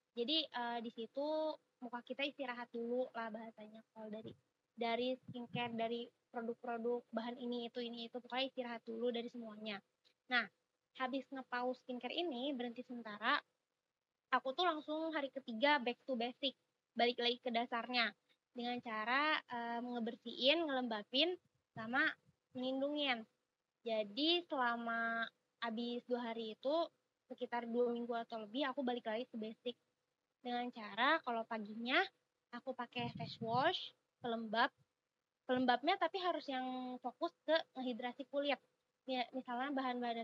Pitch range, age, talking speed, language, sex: 230-265 Hz, 20-39, 130 wpm, Indonesian, female